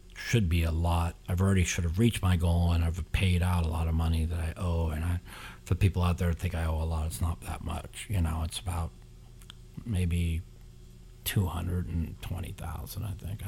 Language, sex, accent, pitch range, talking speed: English, male, American, 85-95 Hz, 200 wpm